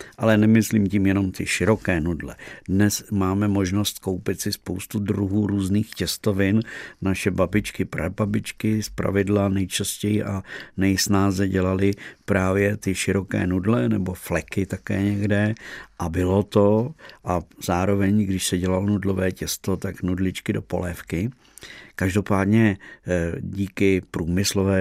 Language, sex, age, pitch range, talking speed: Czech, male, 50-69, 90-105 Hz, 120 wpm